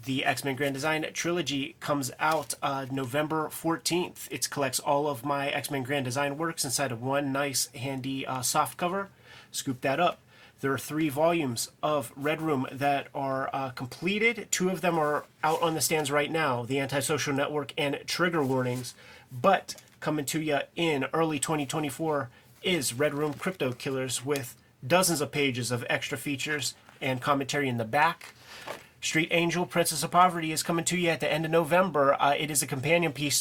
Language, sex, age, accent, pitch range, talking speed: English, male, 30-49, American, 135-160 Hz, 180 wpm